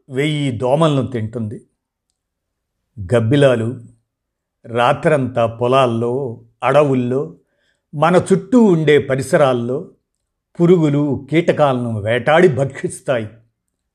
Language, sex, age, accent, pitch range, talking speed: Telugu, male, 50-69, native, 115-150 Hz, 65 wpm